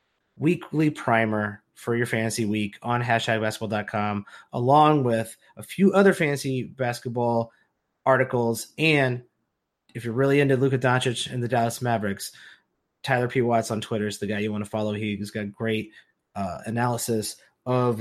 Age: 30-49